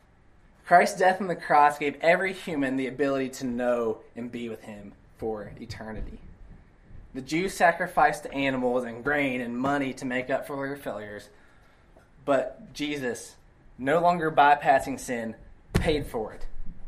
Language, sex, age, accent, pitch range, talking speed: English, male, 20-39, American, 120-160 Hz, 145 wpm